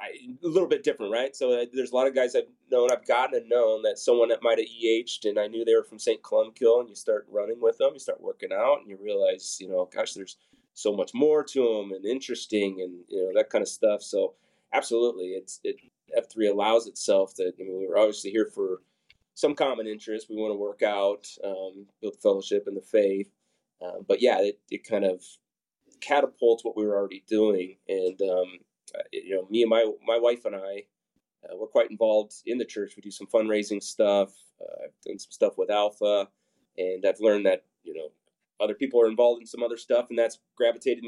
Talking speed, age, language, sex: 220 wpm, 30-49, English, male